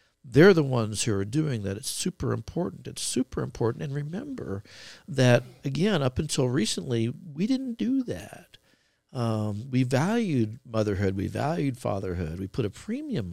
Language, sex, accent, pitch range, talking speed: English, male, American, 105-135 Hz, 160 wpm